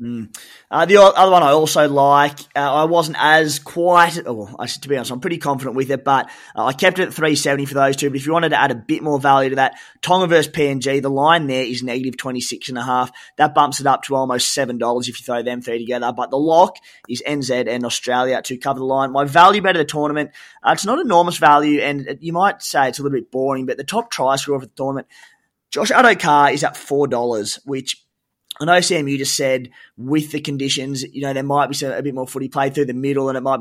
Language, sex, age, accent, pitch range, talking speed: English, male, 20-39, Australian, 130-150 Hz, 255 wpm